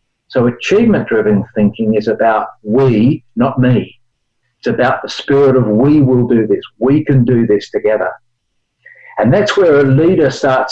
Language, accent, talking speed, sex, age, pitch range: English, Australian, 155 wpm, male, 50-69, 115-135 Hz